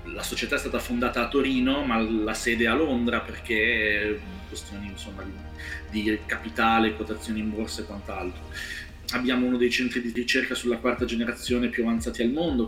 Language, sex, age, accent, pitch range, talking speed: Italian, male, 30-49, native, 110-130 Hz, 165 wpm